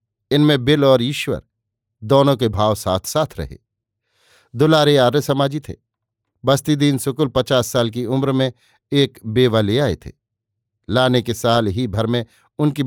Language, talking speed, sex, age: Hindi, 150 wpm, male, 50-69